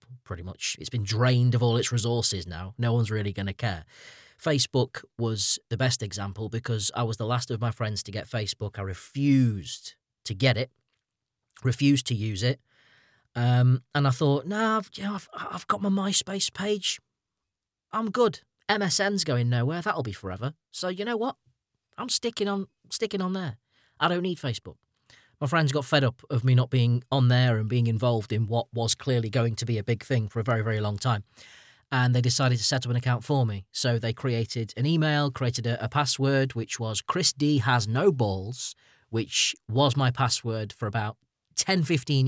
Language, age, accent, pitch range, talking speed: English, 30-49, British, 110-140 Hz, 195 wpm